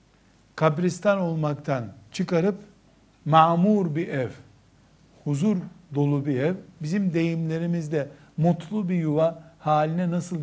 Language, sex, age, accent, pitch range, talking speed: Turkish, male, 60-79, native, 145-185 Hz, 100 wpm